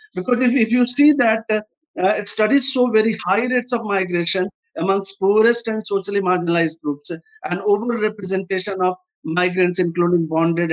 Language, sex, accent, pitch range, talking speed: English, male, Indian, 170-225 Hz, 155 wpm